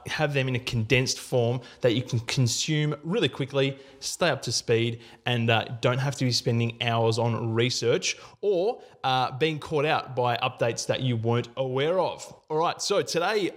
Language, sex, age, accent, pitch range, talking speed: English, male, 20-39, Australian, 125-150 Hz, 185 wpm